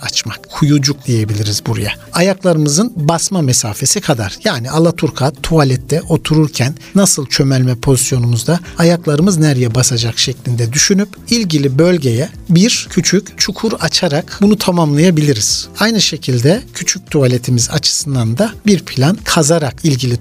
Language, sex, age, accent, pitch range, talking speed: Turkish, male, 60-79, native, 140-200 Hz, 115 wpm